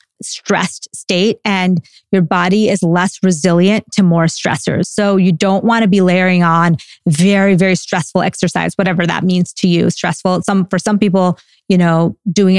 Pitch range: 180-215 Hz